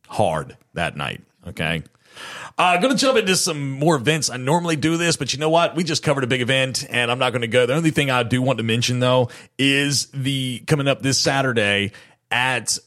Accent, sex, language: American, male, English